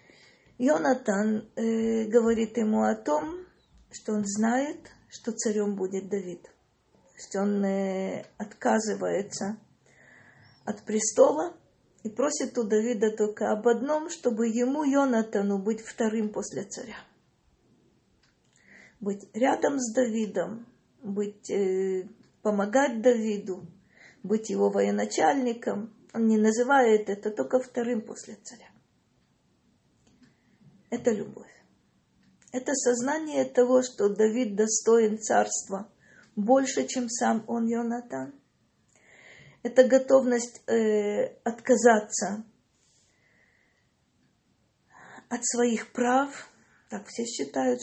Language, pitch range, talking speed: Russian, 210-245 Hz, 95 wpm